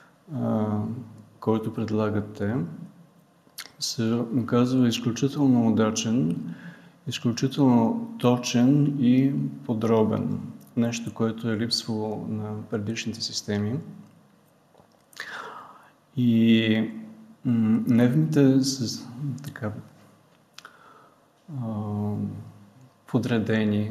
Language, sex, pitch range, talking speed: Bulgarian, male, 110-130 Hz, 55 wpm